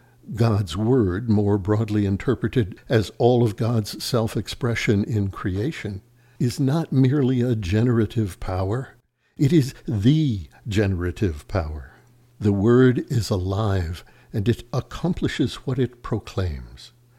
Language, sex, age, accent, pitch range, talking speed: English, male, 60-79, American, 105-125 Hz, 115 wpm